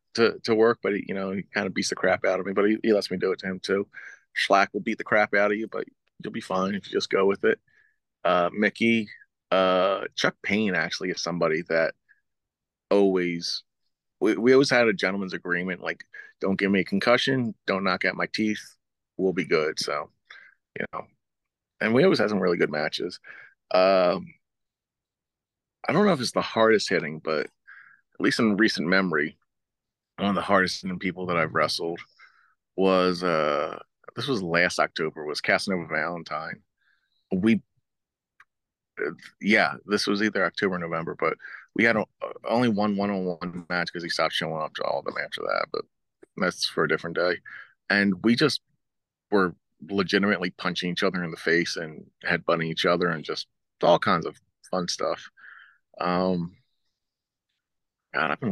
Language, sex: English, male